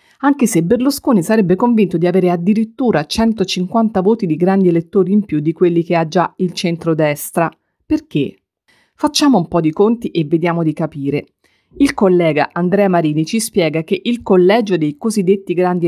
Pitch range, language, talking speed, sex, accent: 165-220 Hz, Italian, 165 wpm, female, native